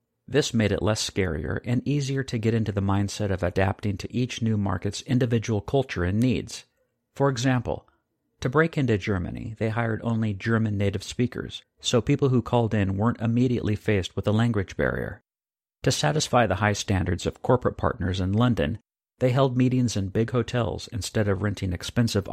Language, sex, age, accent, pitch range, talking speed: English, male, 50-69, American, 100-120 Hz, 175 wpm